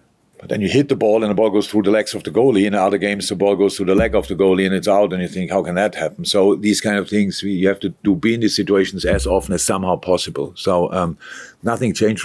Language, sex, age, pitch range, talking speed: English, male, 50-69, 80-100 Hz, 295 wpm